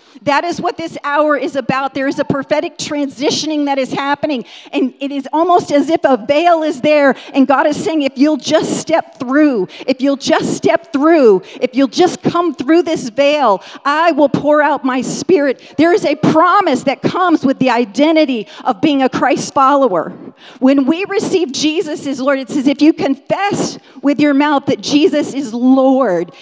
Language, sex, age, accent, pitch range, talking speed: English, female, 40-59, American, 270-330 Hz, 190 wpm